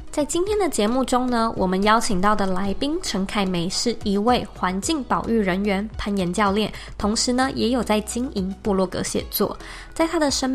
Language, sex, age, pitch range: Chinese, female, 20-39, 195-245 Hz